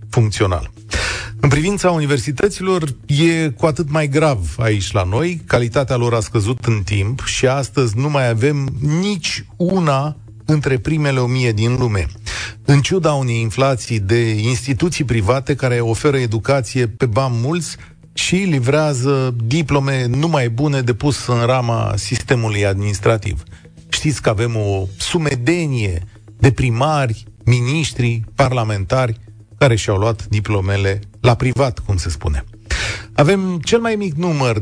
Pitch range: 110-150 Hz